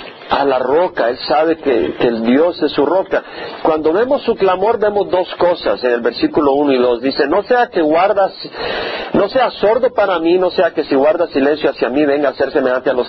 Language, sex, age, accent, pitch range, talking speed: Spanish, male, 50-69, Mexican, 145-230 Hz, 225 wpm